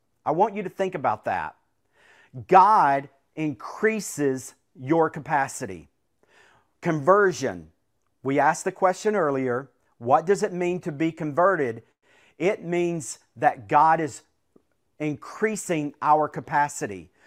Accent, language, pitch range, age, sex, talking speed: American, English, 140-175 Hz, 40-59, male, 110 wpm